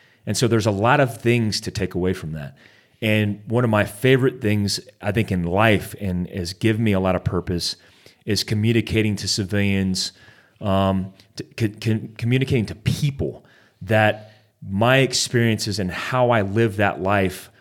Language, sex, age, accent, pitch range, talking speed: English, male, 30-49, American, 100-120 Hz, 160 wpm